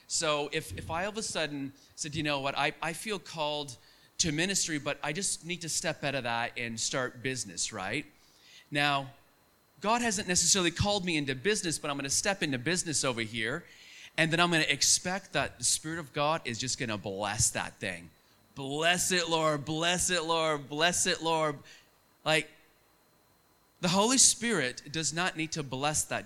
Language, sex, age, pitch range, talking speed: English, male, 30-49, 130-175 Hz, 195 wpm